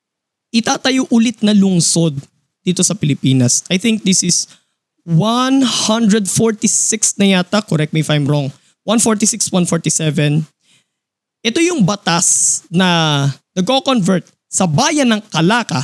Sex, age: male, 20-39